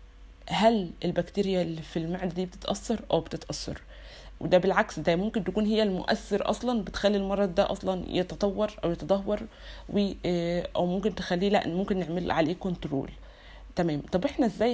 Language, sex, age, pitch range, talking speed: Arabic, female, 20-39, 175-210 Hz, 145 wpm